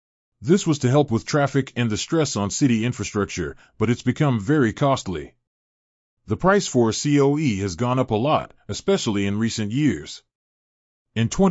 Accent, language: American, Japanese